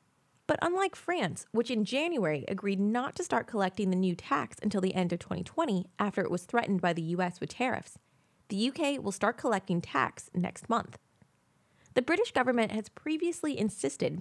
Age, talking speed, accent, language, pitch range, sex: 20-39, 175 wpm, American, English, 185-255 Hz, female